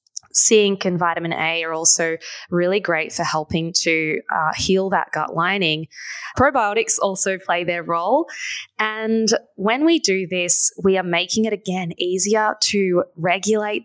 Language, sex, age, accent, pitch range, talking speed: English, female, 20-39, Australian, 170-205 Hz, 145 wpm